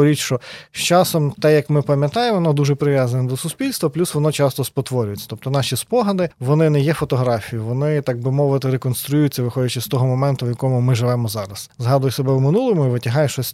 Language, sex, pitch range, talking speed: Ukrainian, male, 130-155 Hz, 200 wpm